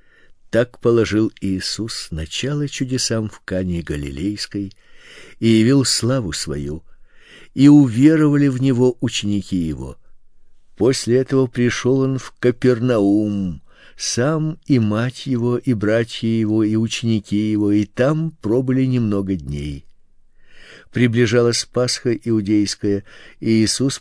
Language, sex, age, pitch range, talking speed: Russian, male, 50-69, 105-130 Hz, 110 wpm